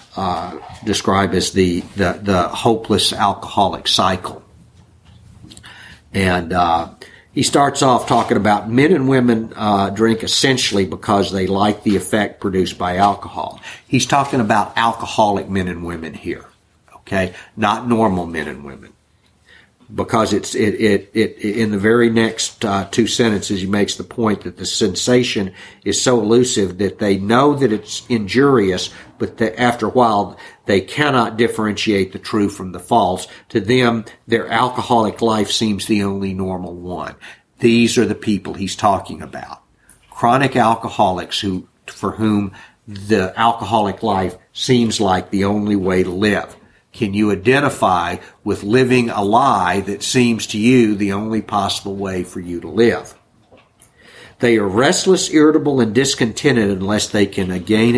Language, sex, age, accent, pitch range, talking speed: English, male, 50-69, American, 95-120 Hz, 150 wpm